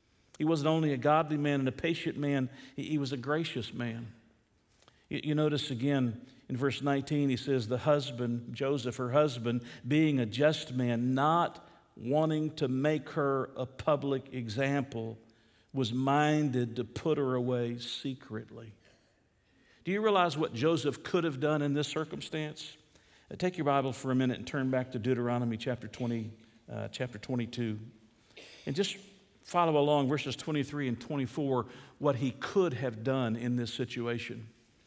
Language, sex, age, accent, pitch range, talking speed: English, male, 50-69, American, 120-155 Hz, 155 wpm